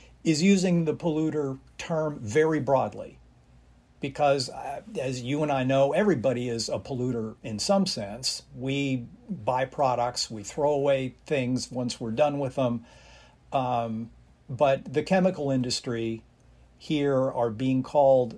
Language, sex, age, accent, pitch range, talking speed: English, male, 50-69, American, 120-150 Hz, 135 wpm